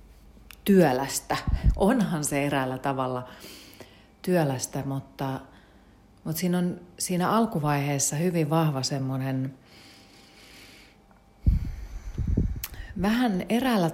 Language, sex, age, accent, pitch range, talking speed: Finnish, female, 40-59, native, 135-170 Hz, 75 wpm